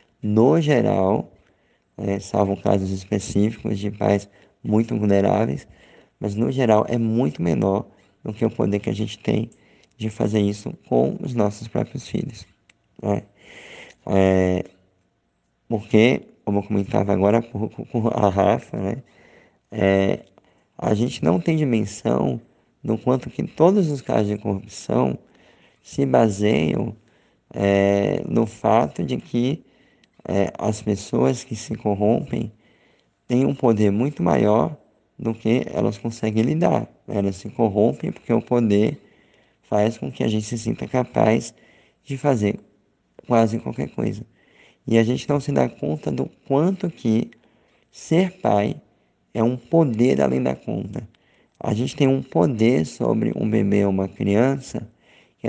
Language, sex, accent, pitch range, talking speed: Portuguese, male, Brazilian, 100-120 Hz, 135 wpm